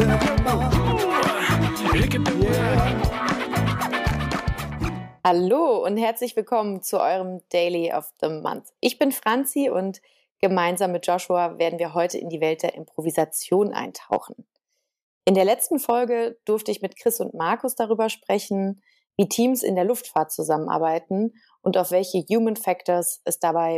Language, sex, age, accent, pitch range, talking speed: German, female, 30-49, German, 175-225 Hz, 130 wpm